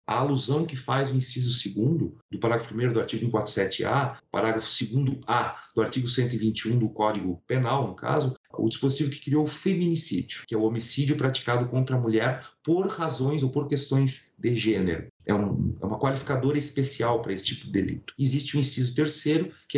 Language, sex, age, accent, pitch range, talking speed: Portuguese, male, 40-59, Brazilian, 120-150 Hz, 185 wpm